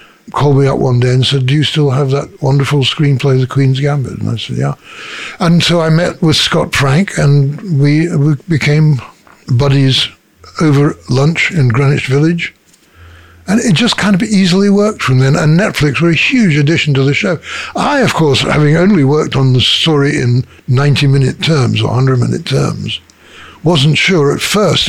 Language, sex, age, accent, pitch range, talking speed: English, male, 60-79, British, 135-190 Hz, 185 wpm